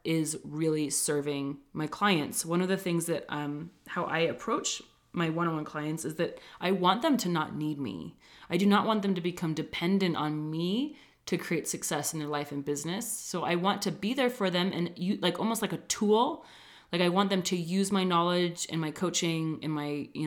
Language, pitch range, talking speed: English, 155-185 Hz, 215 wpm